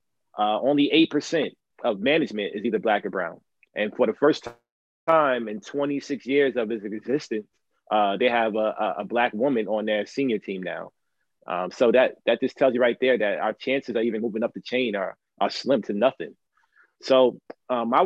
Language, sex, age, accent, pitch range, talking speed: English, male, 20-39, American, 105-130 Hz, 205 wpm